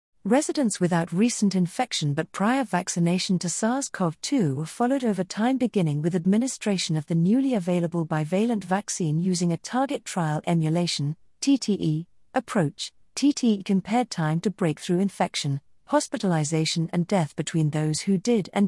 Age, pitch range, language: 40-59, 160-220 Hz, English